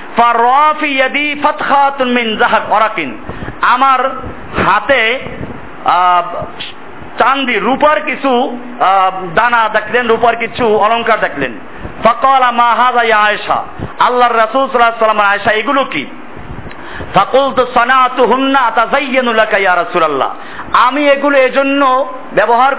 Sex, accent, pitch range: male, native, 210-255 Hz